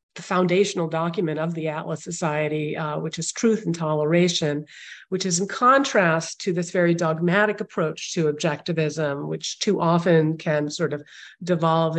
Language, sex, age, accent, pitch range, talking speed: English, female, 40-59, American, 165-205 Hz, 155 wpm